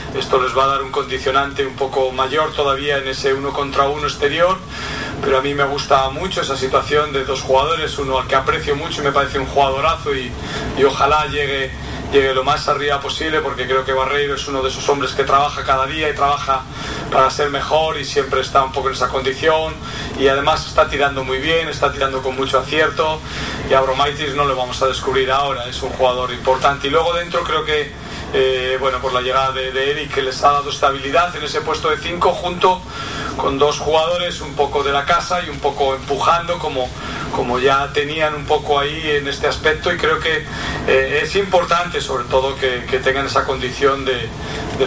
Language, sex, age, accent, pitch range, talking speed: Spanish, male, 40-59, Spanish, 135-150 Hz, 210 wpm